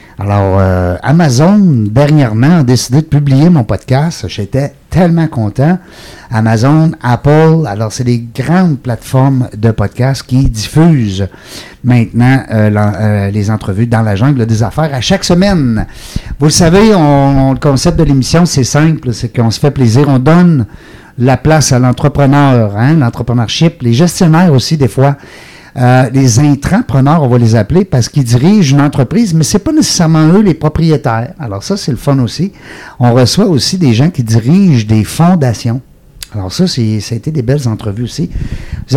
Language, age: French, 50-69